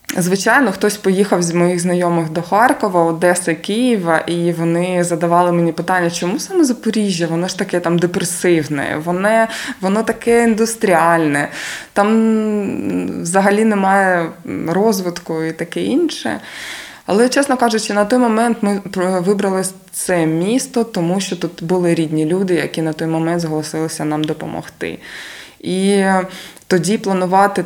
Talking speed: 130 wpm